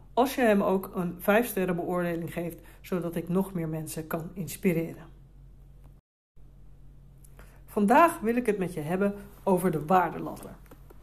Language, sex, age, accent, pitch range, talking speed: Dutch, female, 40-59, Dutch, 155-205 Hz, 135 wpm